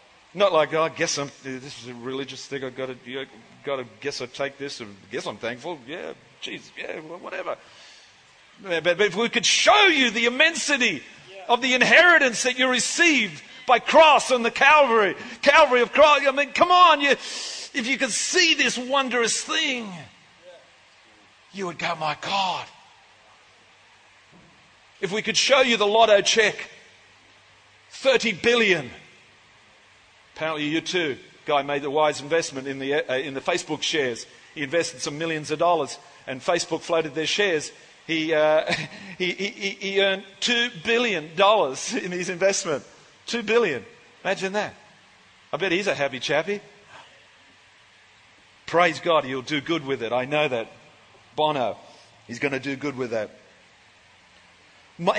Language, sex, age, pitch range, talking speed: English, male, 40-59, 145-235 Hz, 160 wpm